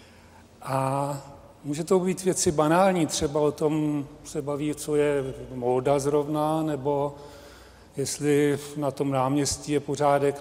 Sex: male